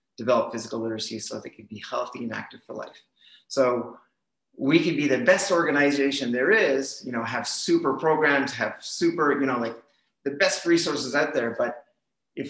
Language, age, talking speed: English, 30-49, 180 wpm